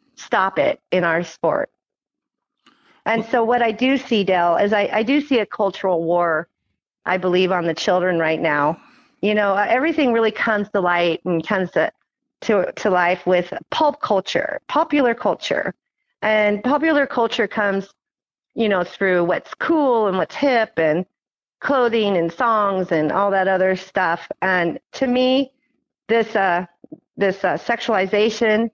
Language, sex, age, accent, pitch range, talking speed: English, female, 40-59, American, 180-225 Hz, 155 wpm